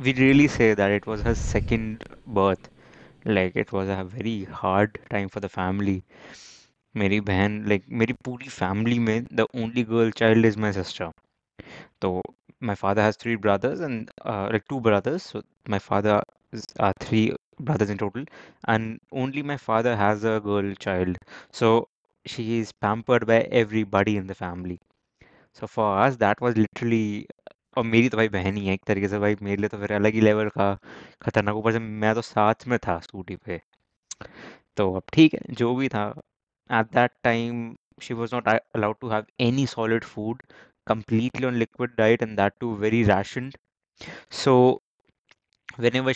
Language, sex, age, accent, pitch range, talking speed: English, male, 20-39, Indian, 100-120 Hz, 145 wpm